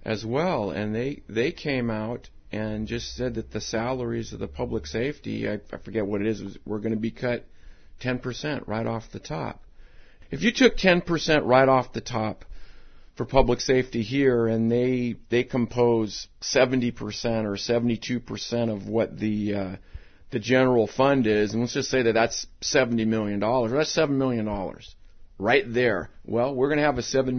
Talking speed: 190 wpm